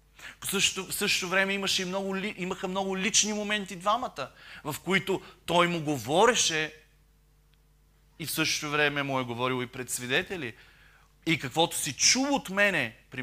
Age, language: 30-49, Bulgarian